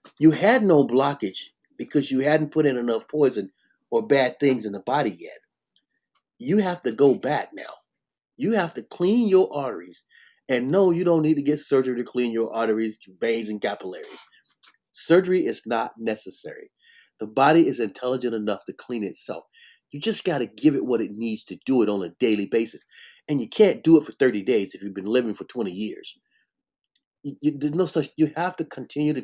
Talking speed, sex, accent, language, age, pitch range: 200 wpm, male, American, English, 30-49, 130-195 Hz